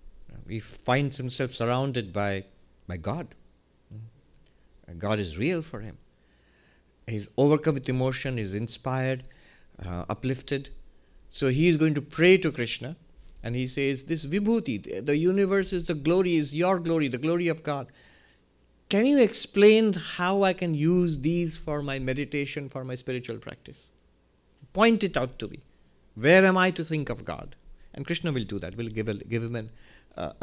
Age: 50-69